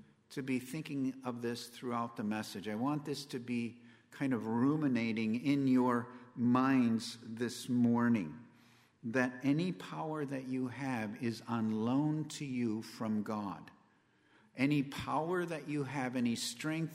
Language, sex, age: English, male, 50-69